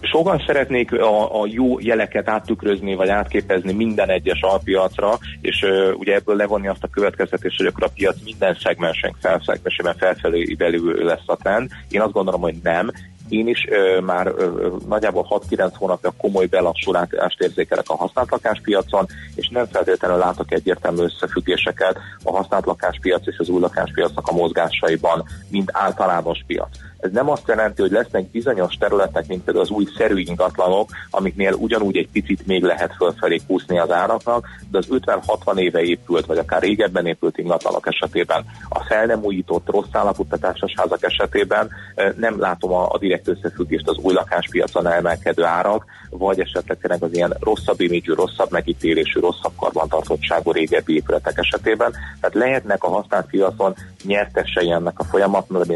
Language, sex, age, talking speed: Hungarian, male, 30-49, 150 wpm